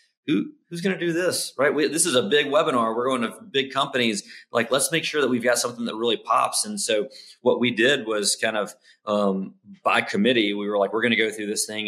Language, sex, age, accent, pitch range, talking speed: English, male, 30-49, American, 105-170 Hz, 250 wpm